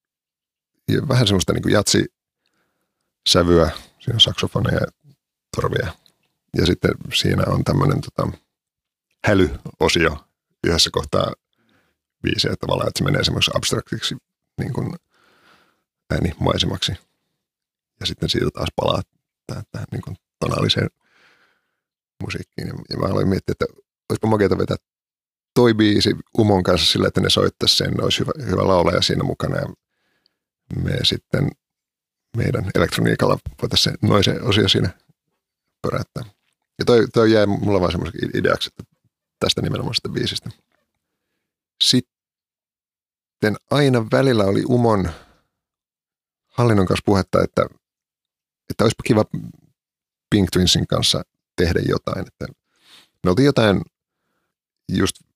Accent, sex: native, male